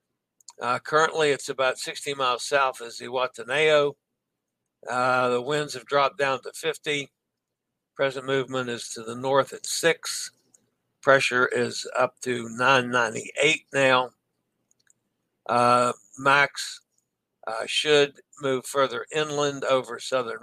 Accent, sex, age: American, male, 60-79